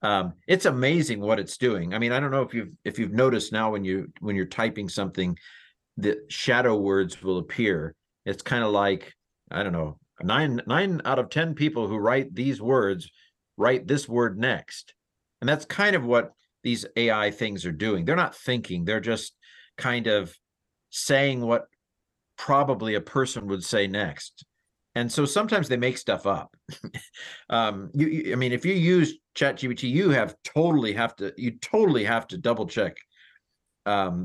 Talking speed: 180 wpm